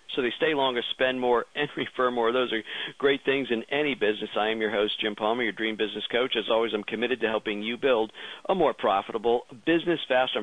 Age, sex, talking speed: 50-69, male, 225 wpm